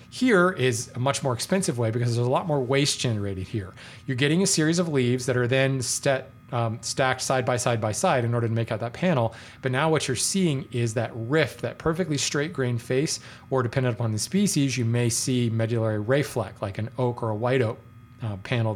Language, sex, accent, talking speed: English, male, American, 225 wpm